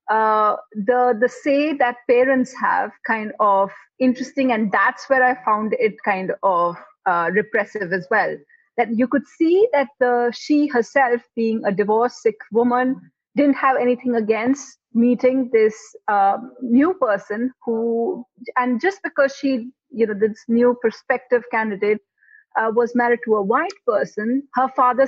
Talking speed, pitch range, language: 155 wpm, 220-270 Hz, English